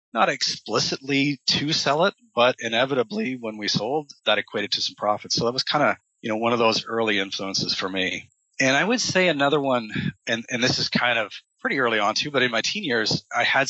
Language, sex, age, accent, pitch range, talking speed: English, male, 30-49, American, 100-130 Hz, 230 wpm